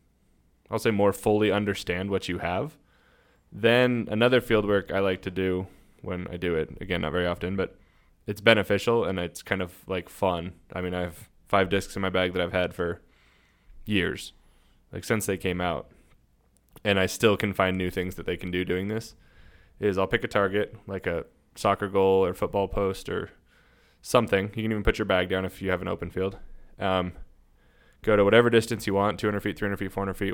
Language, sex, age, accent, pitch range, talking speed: English, male, 20-39, American, 90-105 Hz, 210 wpm